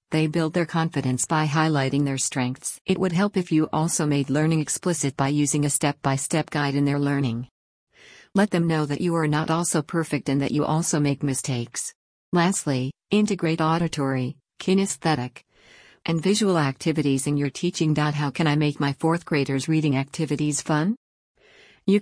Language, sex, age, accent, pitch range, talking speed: English, female, 50-69, American, 140-170 Hz, 165 wpm